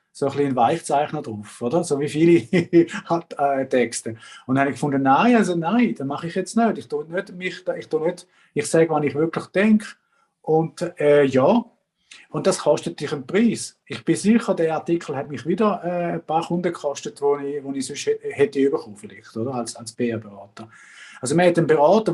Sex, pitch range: male, 130-175 Hz